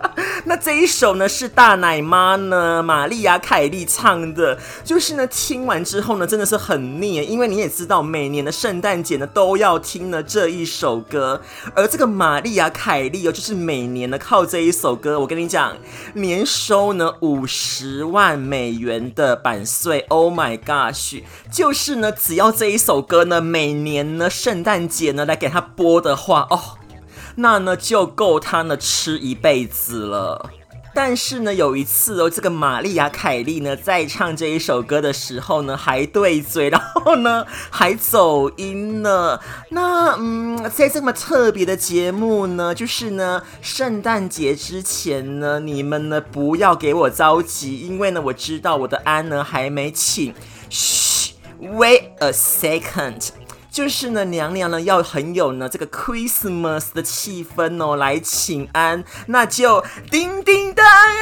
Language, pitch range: Chinese, 150-240 Hz